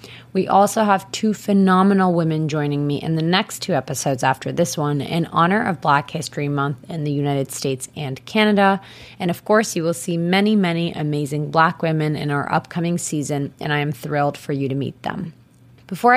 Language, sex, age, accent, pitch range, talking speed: English, female, 20-39, American, 145-175 Hz, 195 wpm